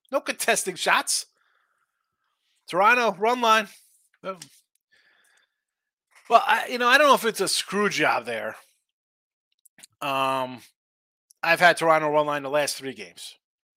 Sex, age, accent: male, 30-49, American